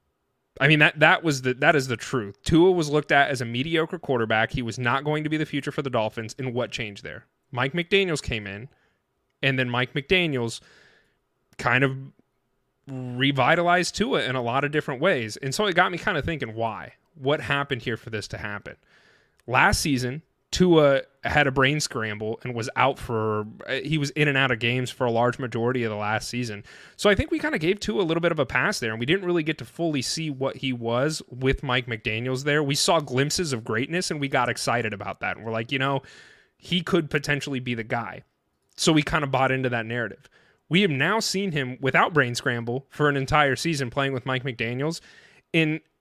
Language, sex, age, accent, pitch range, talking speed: English, male, 30-49, American, 125-155 Hz, 225 wpm